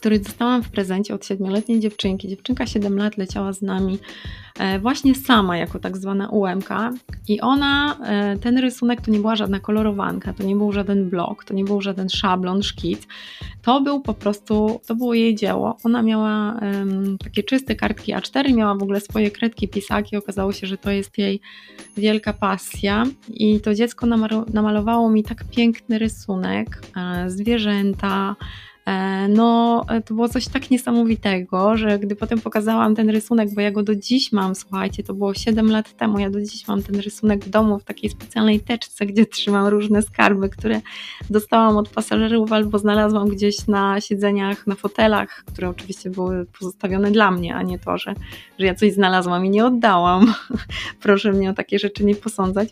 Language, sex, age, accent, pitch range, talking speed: Polish, female, 20-39, native, 195-225 Hz, 175 wpm